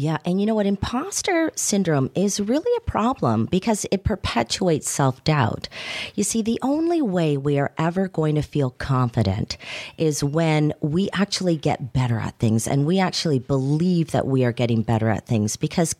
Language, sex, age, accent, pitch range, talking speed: English, female, 40-59, American, 125-185 Hz, 175 wpm